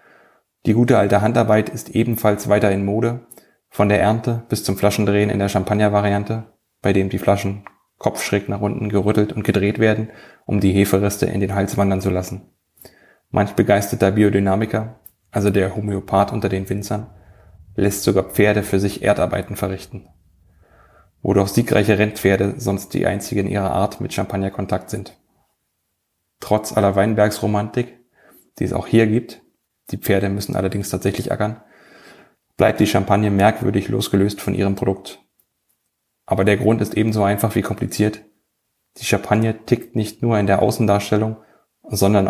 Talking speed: 150 wpm